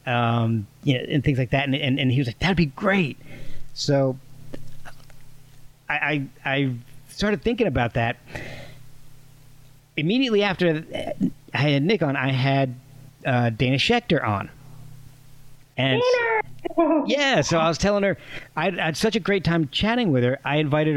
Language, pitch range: English, 130-160 Hz